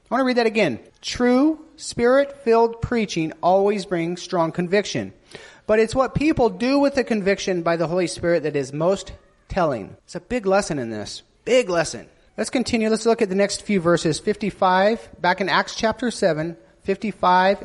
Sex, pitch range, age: male, 180-255 Hz, 40-59